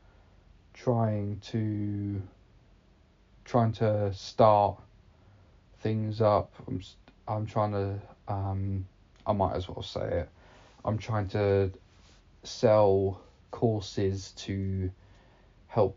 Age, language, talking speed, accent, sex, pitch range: 20-39, English, 95 wpm, British, male, 95-110 Hz